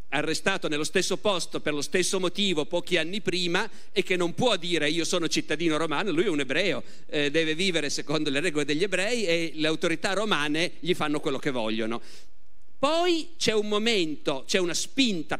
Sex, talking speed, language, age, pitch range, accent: male, 185 wpm, Italian, 50-69, 135-190 Hz, native